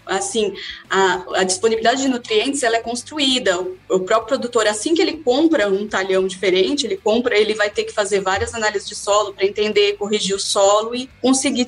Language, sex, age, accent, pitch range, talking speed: Portuguese, female, 20-39, Brazilian, 200-285 Hz, 190 wpm